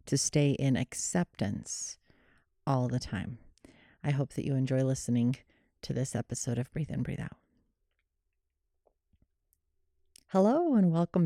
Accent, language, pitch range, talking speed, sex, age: American, English, 135-215 Hz, 130 wpm, female, 30-49